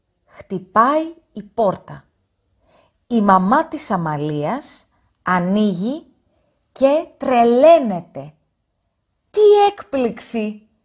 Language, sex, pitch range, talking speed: Greek, female, 180-285 Hz, 65 wpm